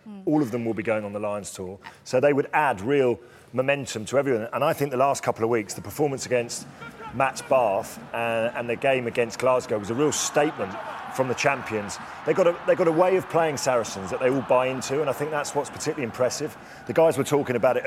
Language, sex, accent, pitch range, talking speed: English, male, British, 120-150 Hz, 240 wpm